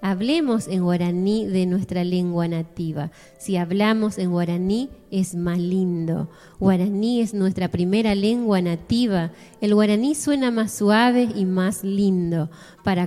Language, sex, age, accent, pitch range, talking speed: Spanish, female, 20-39, Argentinian, 175-205 Hz, 135 wpm